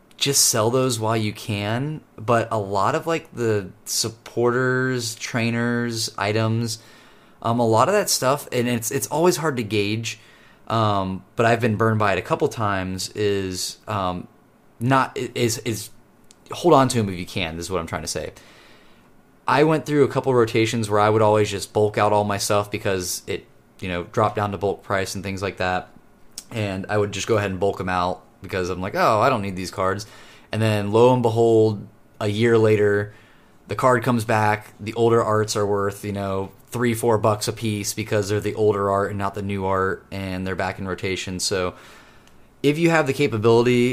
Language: English